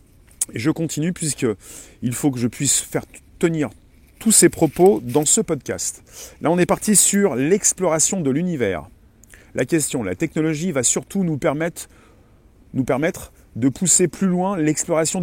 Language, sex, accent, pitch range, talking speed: French, male, French, 140-180 Hz, 160 wpm